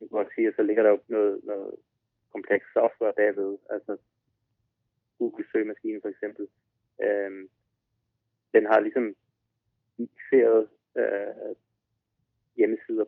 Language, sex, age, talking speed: Danish, male, 20-39, 110 wpm